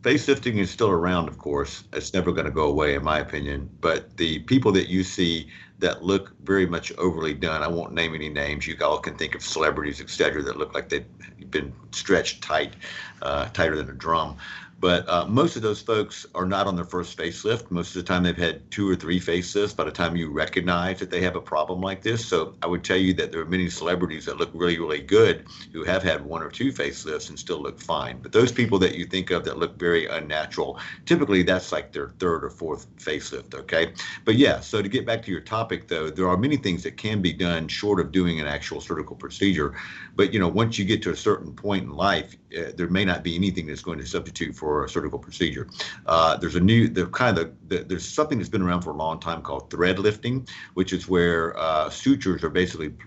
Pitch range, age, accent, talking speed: 85-100 Hz, 50-69, American, 235 wpm